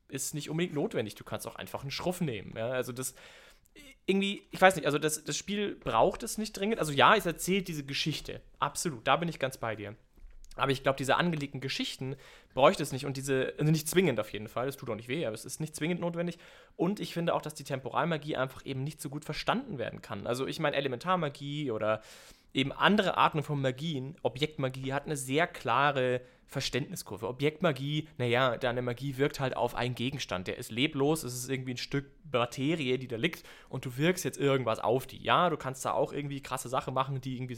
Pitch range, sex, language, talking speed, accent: 130-160 Hz, male, German, 220 wpm, German